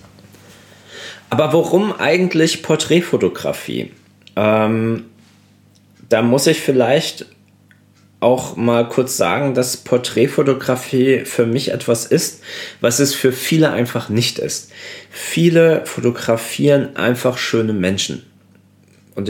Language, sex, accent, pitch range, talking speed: German, male, German, 100-130 Hz, 100 wpm